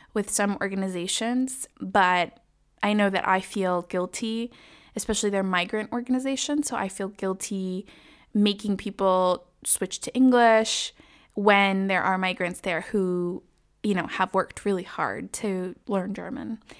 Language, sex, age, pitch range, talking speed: English, female, 20-39, 190-225 Hz, 135 wpm